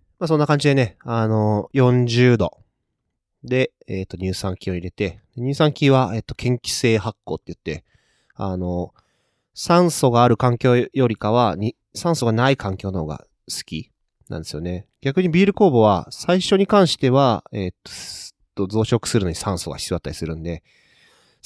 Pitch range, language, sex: 95-120 Hz, Japanese, male